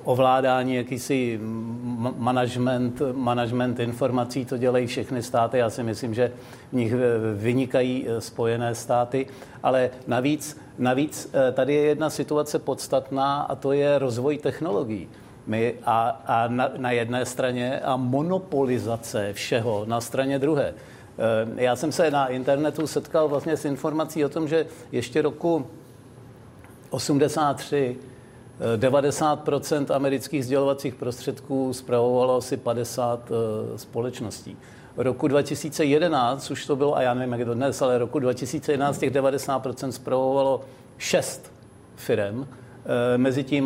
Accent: native